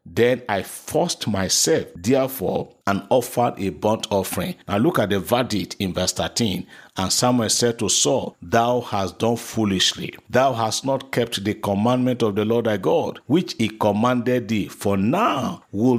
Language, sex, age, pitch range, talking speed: English, male, 50-69, 100-135 Hz, 170 wpm